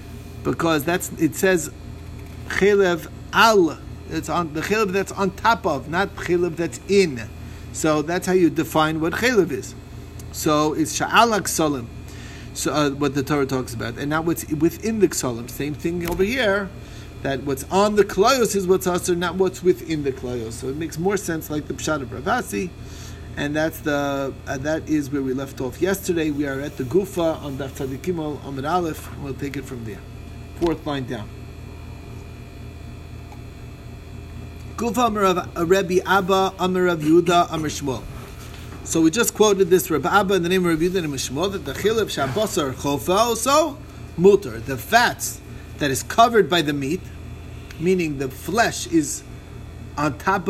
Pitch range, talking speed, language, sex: 115-180 Hz, 170 wpm, English, male